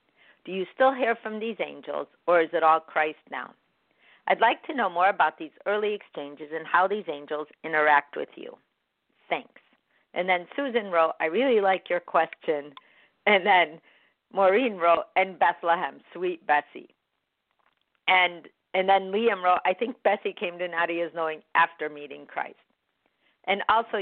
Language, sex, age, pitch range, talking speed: English, female, 50-69, 155-210 Hz, 160 wpm